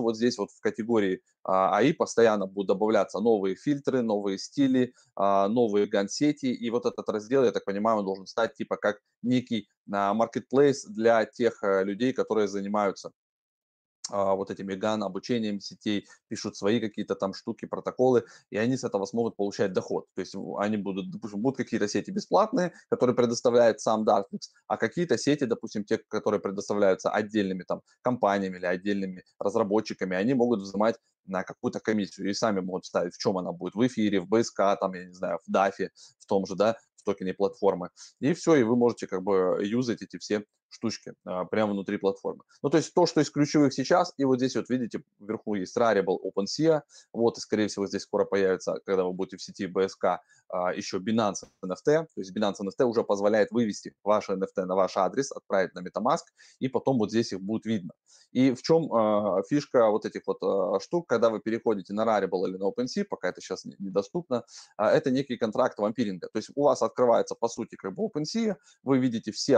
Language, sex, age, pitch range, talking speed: Russian, male, 20-39, 100-125 Hz, 185 wpm